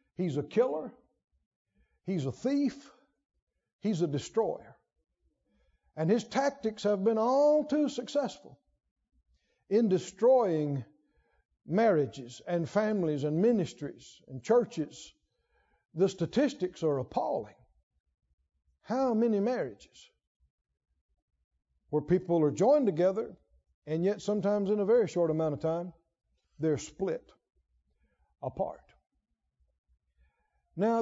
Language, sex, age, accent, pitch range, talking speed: English, male, 60-79, American, 150-245 Hz, 100 wpm